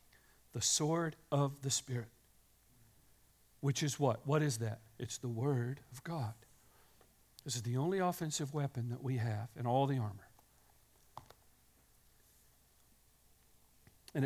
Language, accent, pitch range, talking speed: English, American, 135-220 Hz, 125 wpm